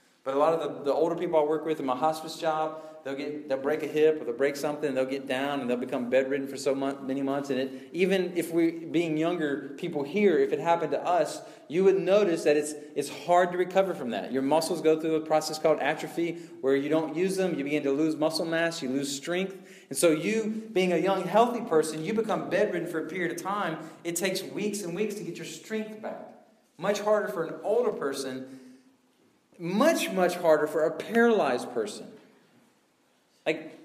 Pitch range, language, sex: 155-205 Hz, English, male